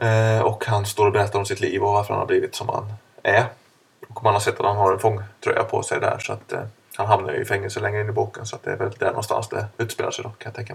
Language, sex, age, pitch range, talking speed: Swedish, male, 20-39, 105-130 Hz, 300 wpm